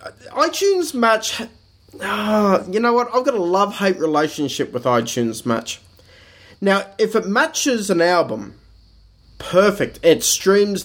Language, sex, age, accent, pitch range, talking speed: English, male, 20-39, Australian, 140-210 Hz, 125 wpm